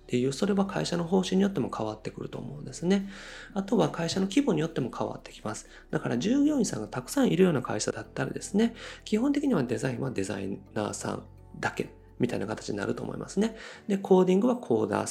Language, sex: Japanese, male